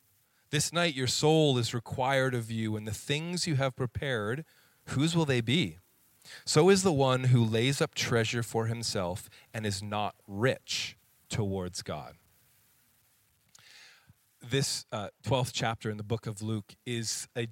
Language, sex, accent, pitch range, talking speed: English, male, American, 120-165 Hz, 155 wpm